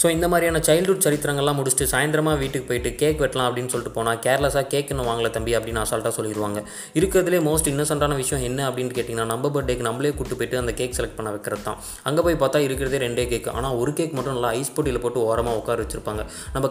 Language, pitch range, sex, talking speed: Tamil, 115-140 Hz, male, 200 wpm